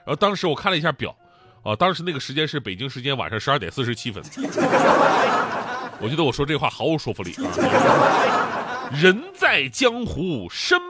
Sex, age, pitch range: male, 30-49, 115-185 Hz